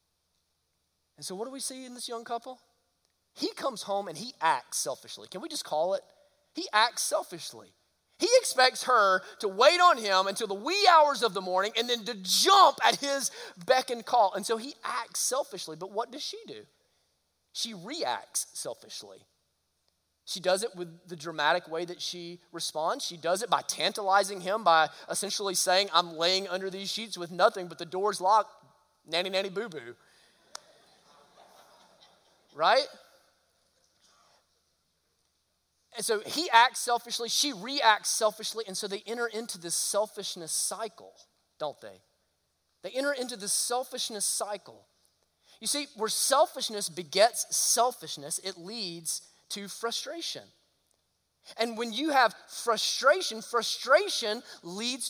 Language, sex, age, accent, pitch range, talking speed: English, male, 20-39, American, 175-245 Hz, 150 wpm